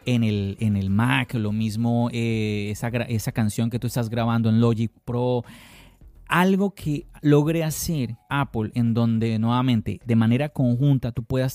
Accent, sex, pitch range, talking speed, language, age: Colombian, male, 115-155 Hz, 160 wpm, Spanish, 30-49